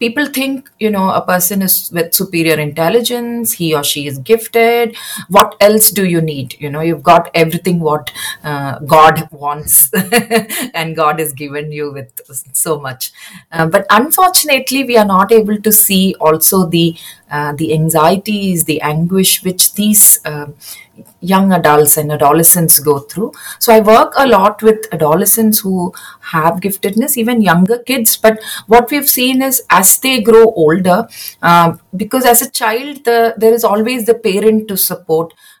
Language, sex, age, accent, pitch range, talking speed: English, female, 30-49, Indian, 160-230 Hz, 165 wpm